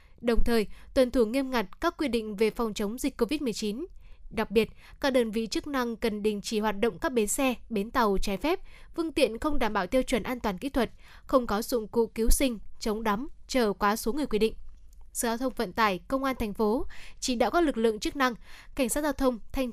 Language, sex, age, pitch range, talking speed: Vietnamese, female, 10-29, 220-265 Hz, 240 wpm